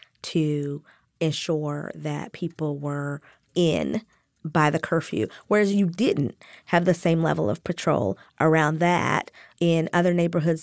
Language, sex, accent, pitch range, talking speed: English, female, American, 170-225 Hz, 130 wpm